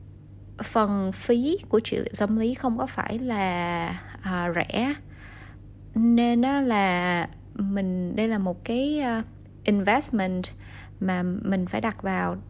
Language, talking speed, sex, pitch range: Vietnamese, 135 wpm, female, 185-240 Hz